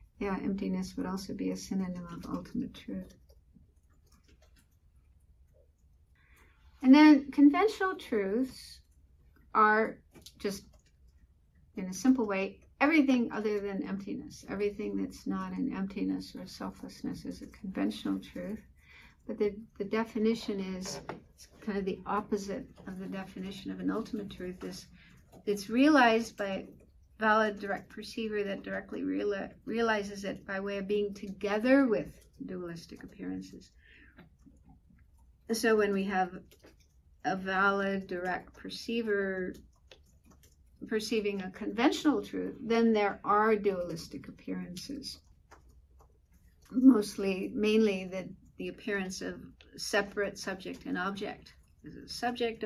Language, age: English, 60-79